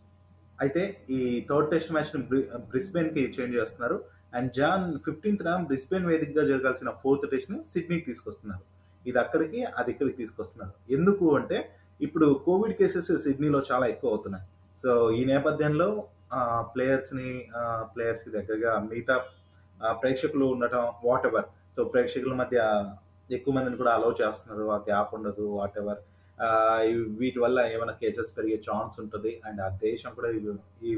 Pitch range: 105-130 Hz